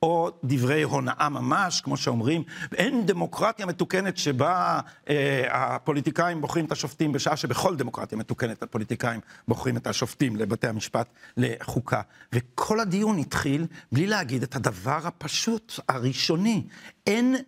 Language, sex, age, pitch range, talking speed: English, male, 60-79, 145-200 Hz, 120 wpm